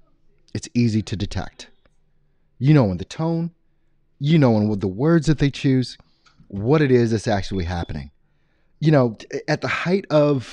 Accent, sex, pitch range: American, male, 100-135 Hz